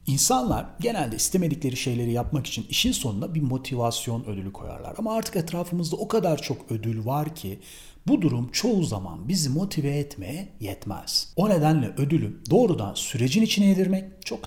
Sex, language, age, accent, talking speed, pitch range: male, Turkish, 40-59, native, 155 wpm, 110-175 Hz